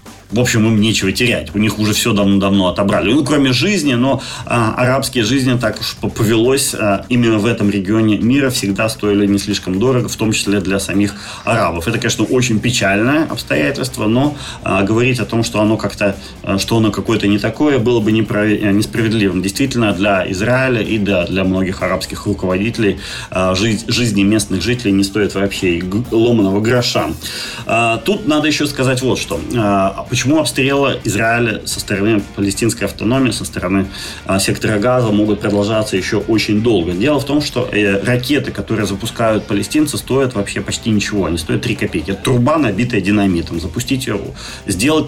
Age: 30-49